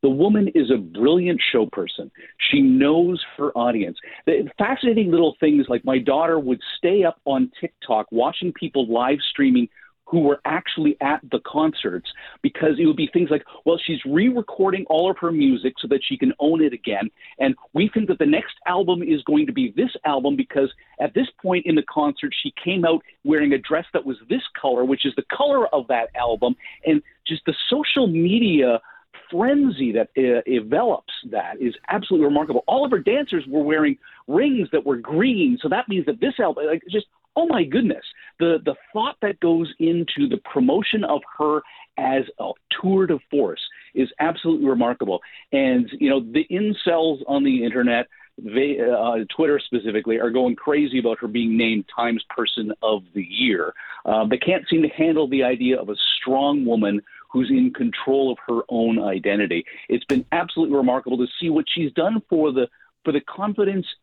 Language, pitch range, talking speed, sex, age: English, 130-215 Hz, 185 wpm, male, 40-59